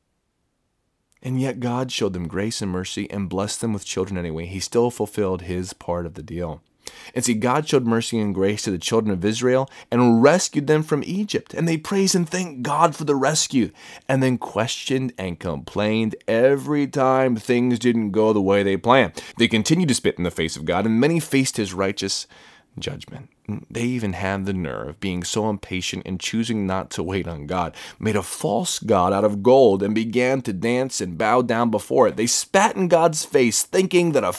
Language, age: English, 30-49